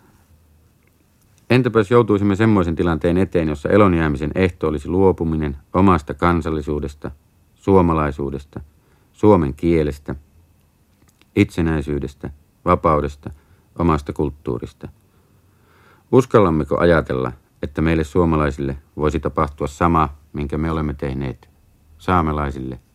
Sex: male